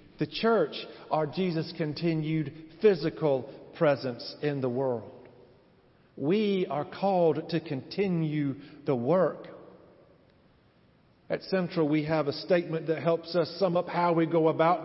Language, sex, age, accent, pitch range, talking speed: English, male, 50-69, American, 150-170 Hz, 130 wpm